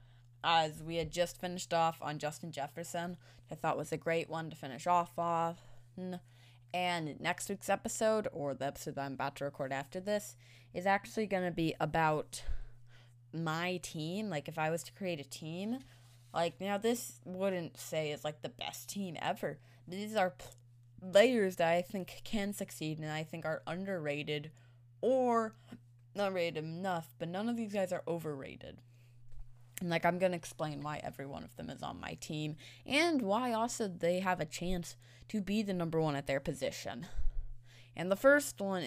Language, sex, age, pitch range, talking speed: English, female, 20-39, 120-180 Hz, 180 wpm